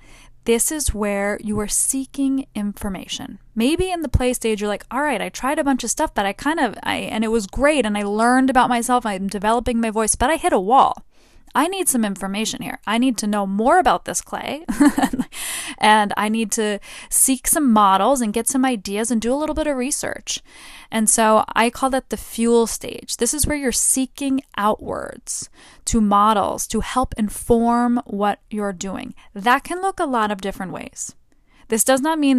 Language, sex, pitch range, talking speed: English, female, 205-250 Hz, 205 wpm